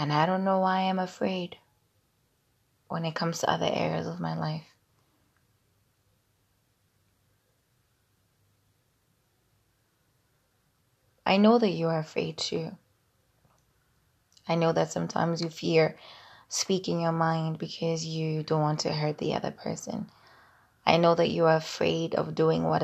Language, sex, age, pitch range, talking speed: English, female, 20-39, 115-165 Hz, 130 wpm